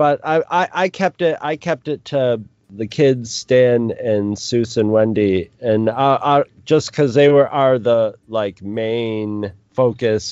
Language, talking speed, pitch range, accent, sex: English, 170 wpm, 105-130 Hz, American, male